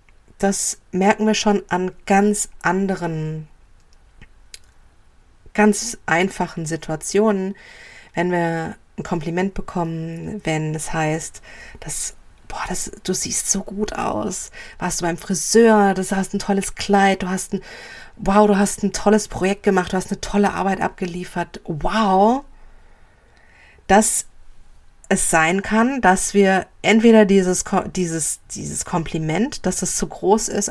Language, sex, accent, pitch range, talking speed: German, female, German, 165-205 Hz, 135 wpm